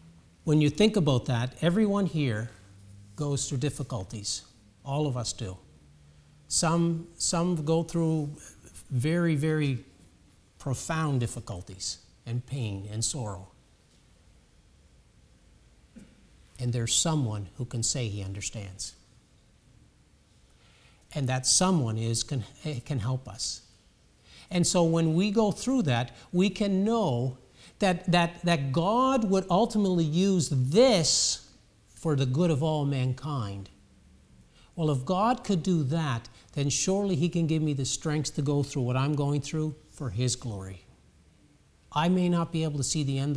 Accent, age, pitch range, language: American, 50-69, 110-165 Hz, English